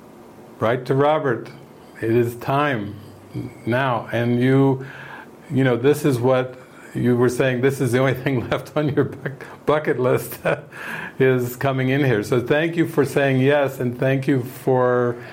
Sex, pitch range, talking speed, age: male, 120-140 Hz, 160 wpm, 50-69